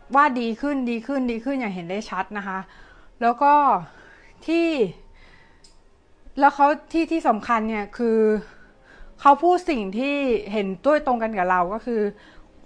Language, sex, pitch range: Thai, female, 205-260 Hz